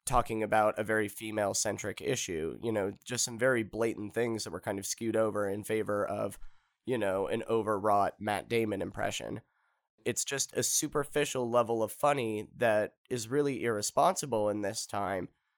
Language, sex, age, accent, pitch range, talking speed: English, male, 30-49, American, 110-125 Hz, 165 wpm